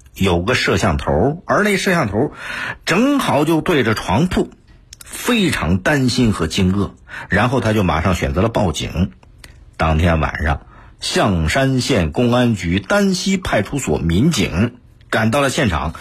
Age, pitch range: 50-69, 85-135 Hz